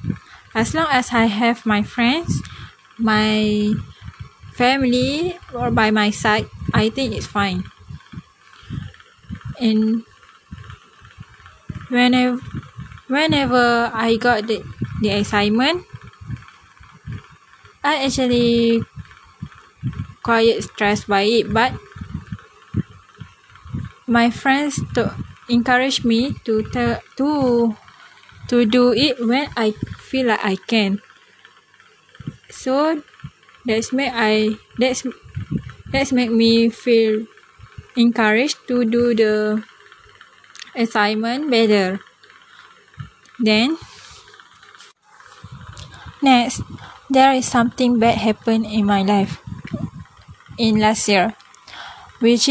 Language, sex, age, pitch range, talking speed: English, female, 20-39, 215-250 Hz, 90 wpm